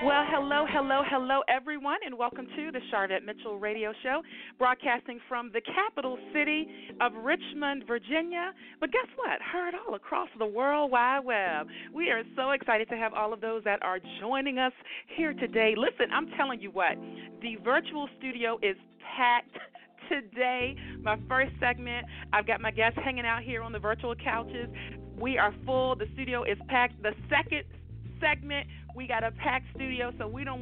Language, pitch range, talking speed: English, 215-270 Hz, 175 wpm